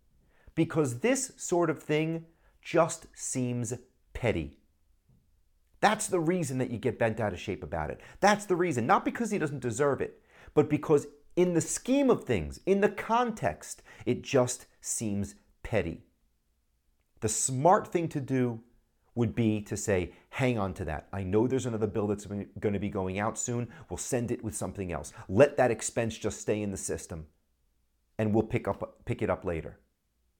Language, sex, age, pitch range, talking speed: English, male, 40-59, 90-140 Hz, 180 wpm